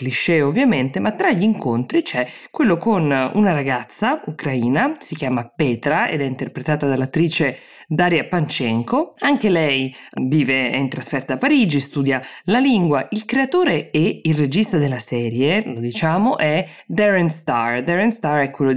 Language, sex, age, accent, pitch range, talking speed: Italian, female, 20-39, native, 130-170 Hz, 150 wpm